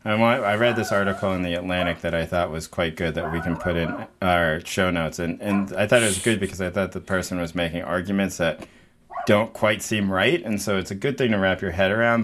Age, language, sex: 30-49, English, male